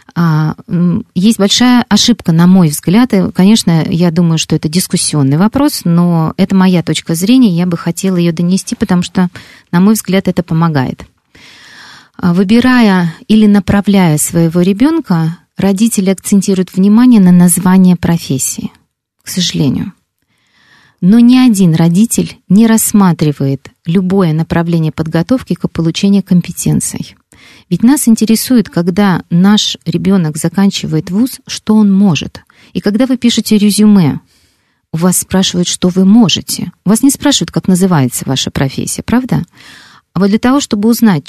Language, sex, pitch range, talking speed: Russian, female, 170-215 Hz, 135 wpm